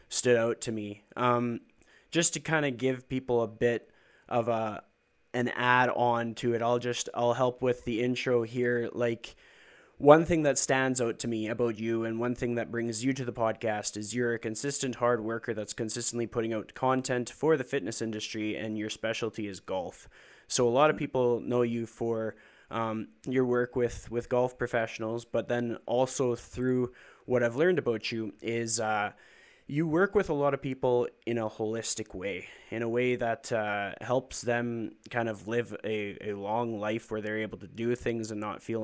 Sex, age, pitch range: male, 20-39, 110-125 Hz